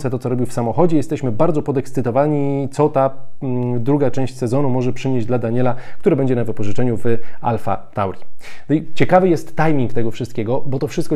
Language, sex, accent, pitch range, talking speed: Polish, male, native, 120-140 Hz, 170 wpm